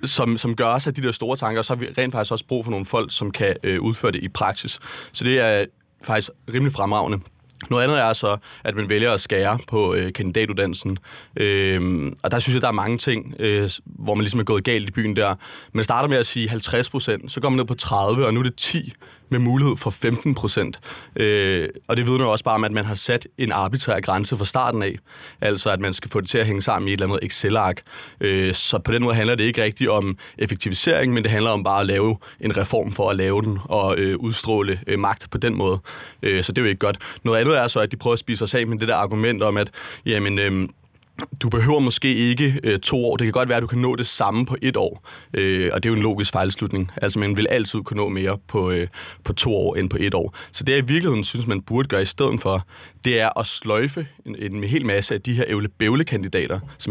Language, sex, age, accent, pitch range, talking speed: Danish, male, 30-49, native, 100-125 Hz, 260 wpm